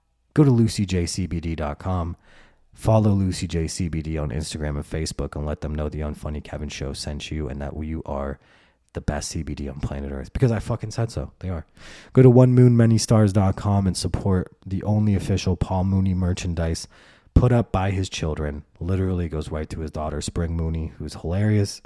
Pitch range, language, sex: 75-95 Hz, English, male